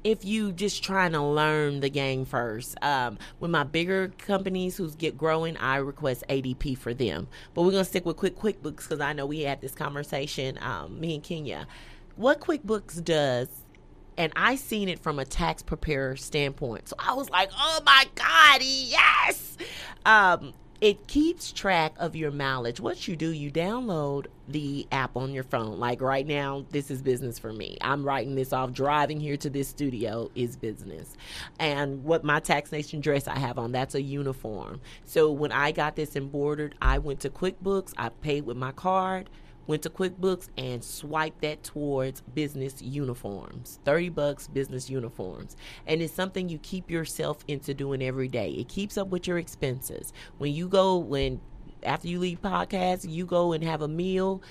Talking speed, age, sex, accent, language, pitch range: 185 wpm, 30-49, female, American, English, 135-175 Hz